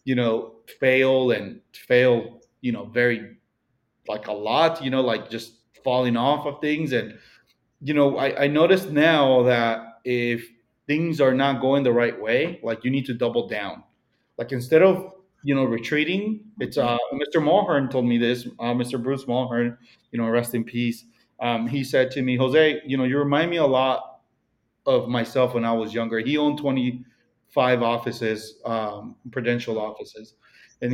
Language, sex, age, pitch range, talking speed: English, male, 30-49, 120-135 Hz, 175 wpm